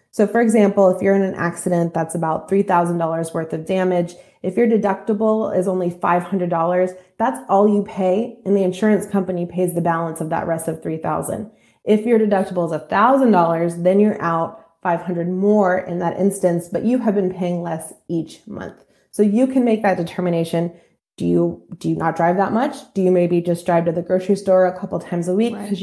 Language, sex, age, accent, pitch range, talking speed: English, female, 20-39, American, 170-200 Hz, 200 wpm